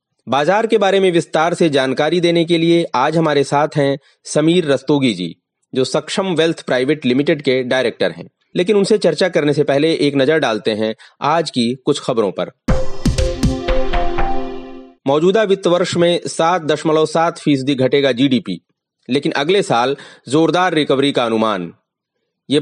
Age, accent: 40-59, native